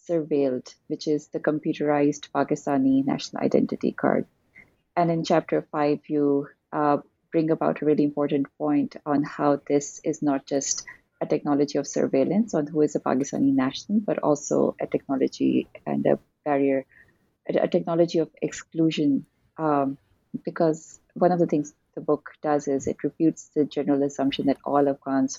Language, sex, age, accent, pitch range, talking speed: English, female, 30-49, Indian, 140-155 Hz, 155 wpm